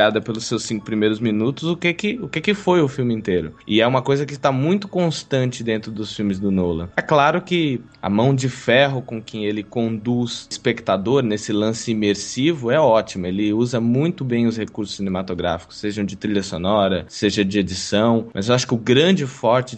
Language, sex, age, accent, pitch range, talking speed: Portuguese, male, 20-39, Brazilian, 105-135 Hz, 205 wpm